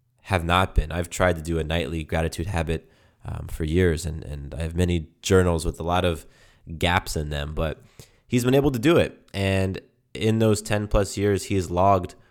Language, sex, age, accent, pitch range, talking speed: English, male, 20-39, American, 85-110 Hz, 210 wpm